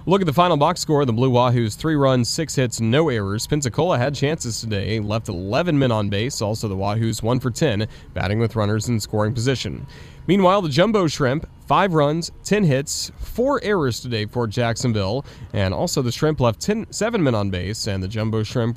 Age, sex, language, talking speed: 30-49, male, English, 200 wpm